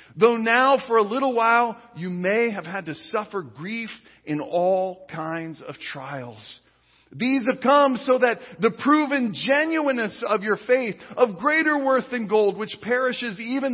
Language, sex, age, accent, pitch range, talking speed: English, male, 40-59, American, 155-245 Hz, 160 wpm